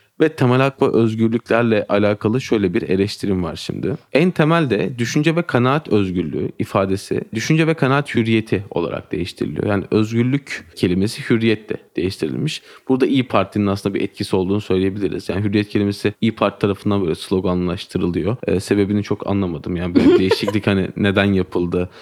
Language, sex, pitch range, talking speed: Turkish, male, 100-125 Hz, 150 wpm